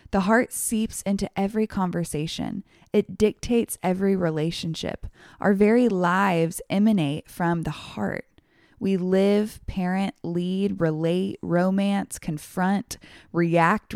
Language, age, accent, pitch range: English, 20-39, American, 170-215 Hz